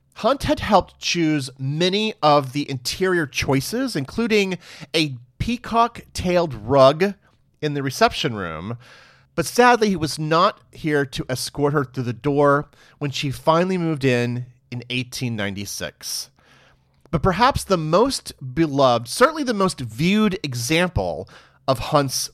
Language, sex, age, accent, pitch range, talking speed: English, male, 30-49, American, 125-175 Hz, 130 wpm